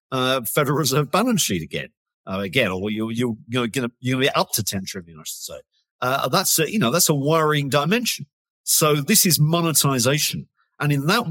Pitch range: 115-160 Hz